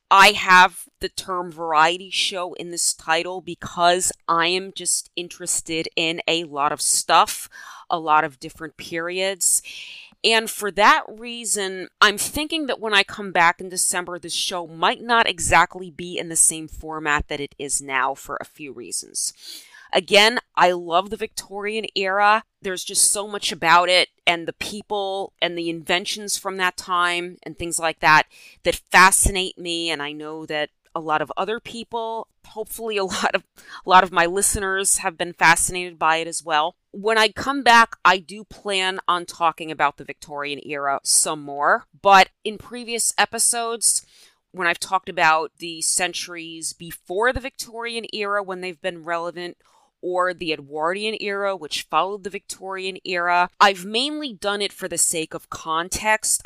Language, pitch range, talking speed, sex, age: English, 165-200 Hz, 170 wpm, female, 30-49